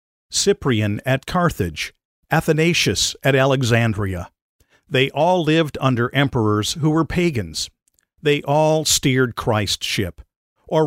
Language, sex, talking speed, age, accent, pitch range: English, male, 110 wpm, 50-69, American, 110-155 Hz